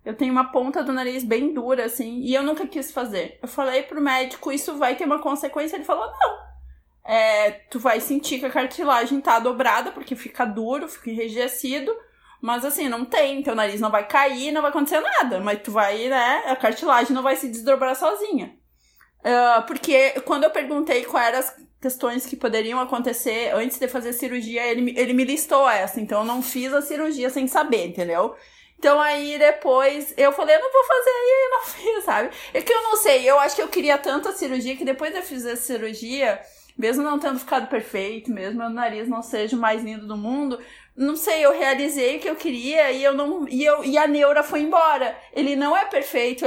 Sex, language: female, Portuguese